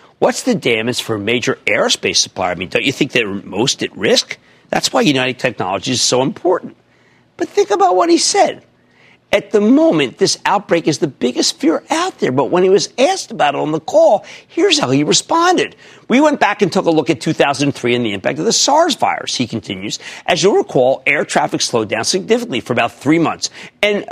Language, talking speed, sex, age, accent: English, 215 wpm, male, 50-69, American